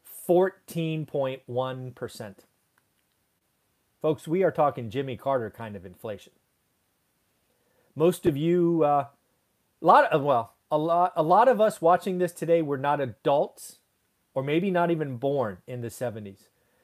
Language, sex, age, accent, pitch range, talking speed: English, male, 40-59, American, 125-170 Hz, 135 wpm